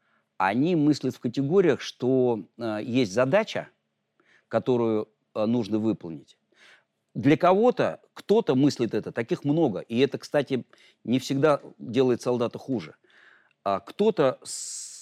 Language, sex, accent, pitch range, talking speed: Russian, male, native, 110-140 Hz, 110 wpm